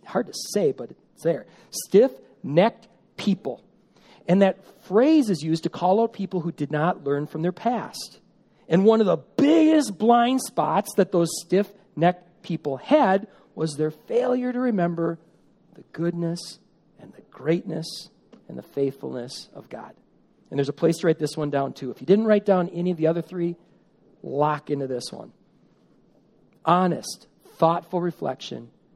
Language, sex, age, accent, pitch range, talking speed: English, male, 40-59, American, 145-200 Hz, 160 wpm